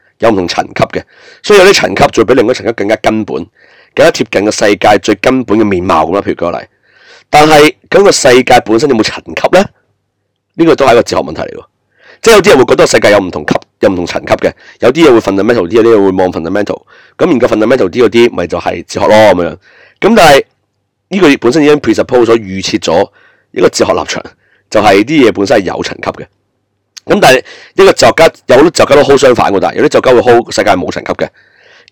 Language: Chinese